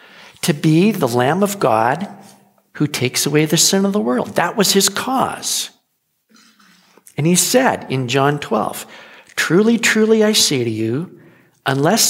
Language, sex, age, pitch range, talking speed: English, male, 50-69, 160-210 Hz, 155 wpm